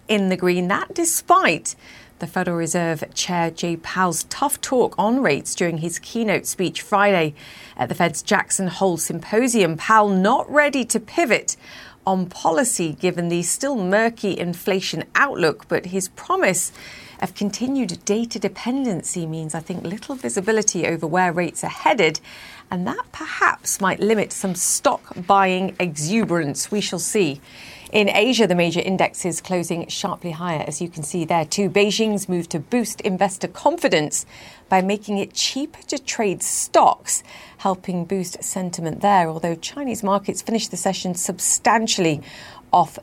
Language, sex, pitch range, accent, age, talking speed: English, female, 170-215 Hz, British, 40-59, 150 wpm